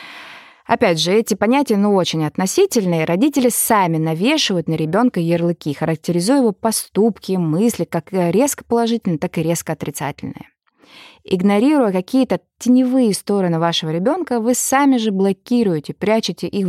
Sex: female